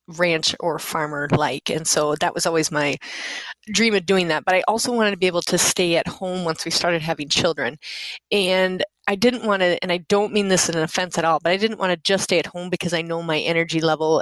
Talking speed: 255 wpm